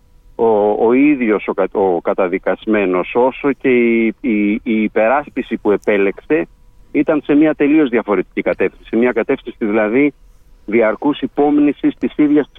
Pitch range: 105-140 Hz